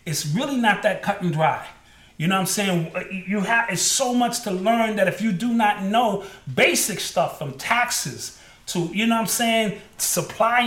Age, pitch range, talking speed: 30-49, 185-230 Hz, 200 wpm